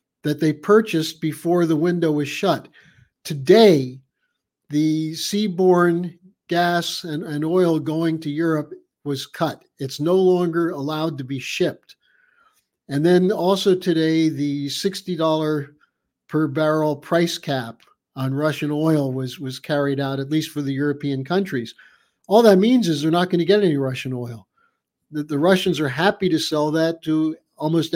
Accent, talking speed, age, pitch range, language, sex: American, 155 wpm, 50-69, 150-185 Hz, English, male